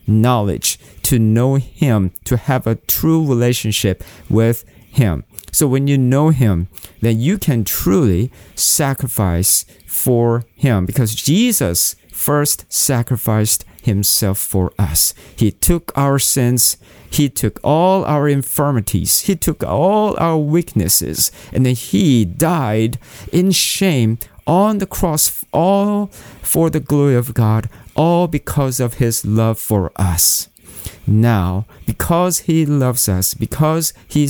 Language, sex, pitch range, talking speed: English, male, 100-140 Hz, 130 wpm